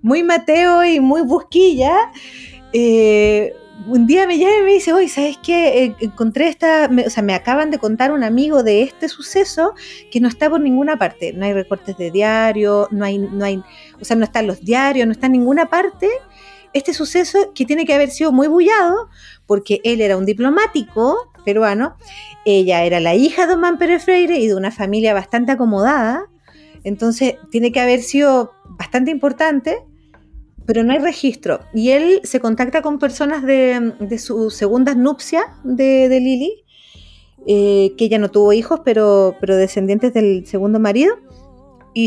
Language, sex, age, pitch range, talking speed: Spanish, female, 30-49, 215-305 Hz, 175 wpm